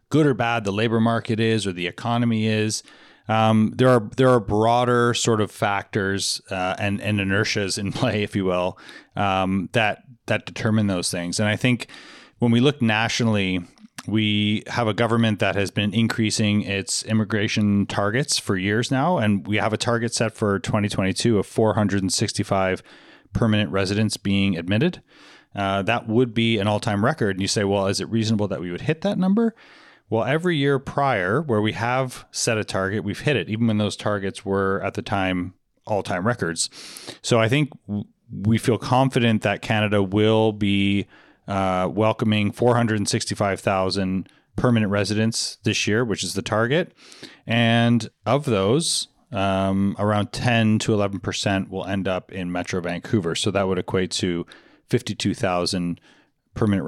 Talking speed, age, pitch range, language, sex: 160 wpm, 30-49, 95-115 Hz, English, male